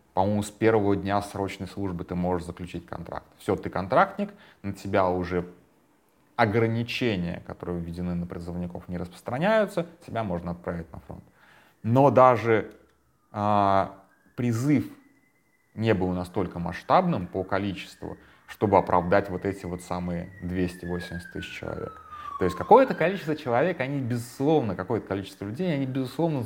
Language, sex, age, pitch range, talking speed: Russian, male, 30-49, 90-115 Hz, 135 wpm